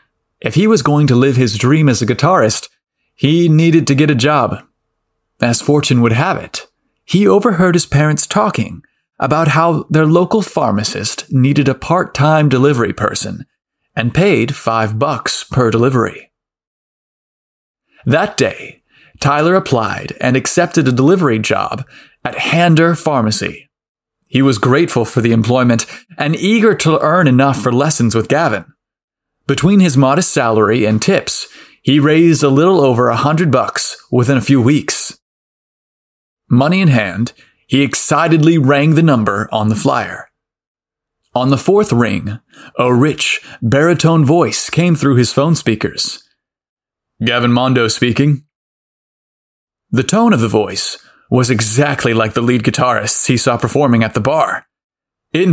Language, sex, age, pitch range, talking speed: English, male, 30-49, 115-155 Hz, 145 wpm